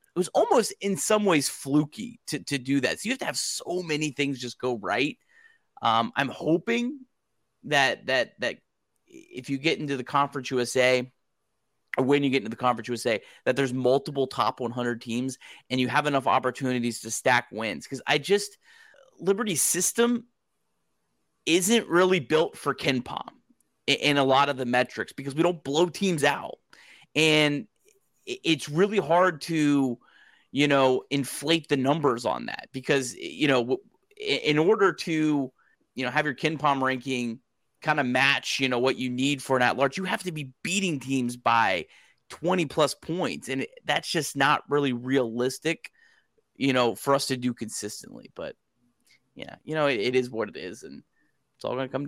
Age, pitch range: 30-49, 130-165 Hz